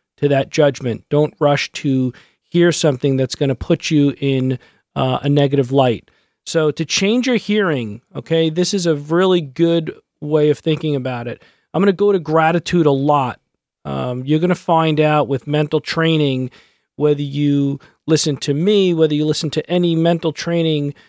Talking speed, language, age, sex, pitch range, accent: 180 wpm, English, 40-59, male, 140-160 Hz, American